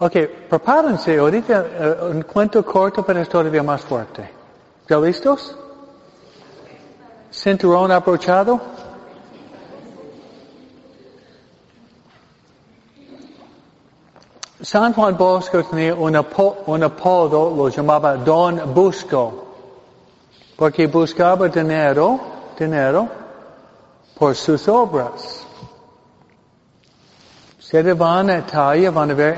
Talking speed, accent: 85 wpm, American